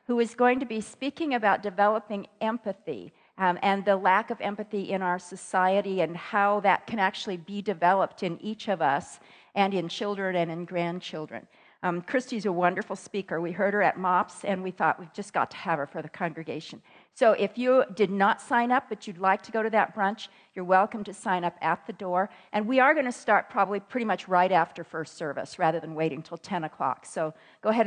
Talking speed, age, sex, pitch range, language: 220 wpm, 50-69, female, 180-220 Hz, English